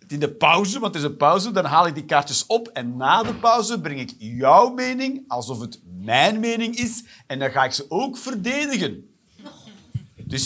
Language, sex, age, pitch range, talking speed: Dutch, male, 50-69, 145-235 Hz, 200 wpm